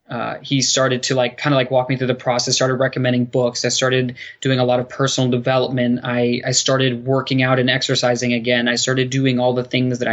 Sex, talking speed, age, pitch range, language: male, 230 wpm, 20-39, 120-130 Hz, English